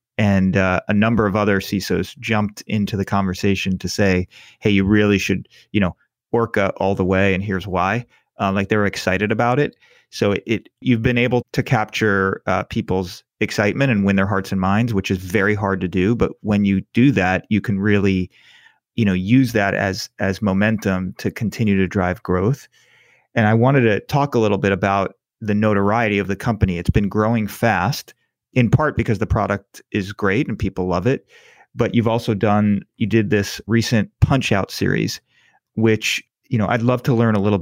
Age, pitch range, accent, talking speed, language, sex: 30-49, 95-115 Hz, American, 200 wpm, English, male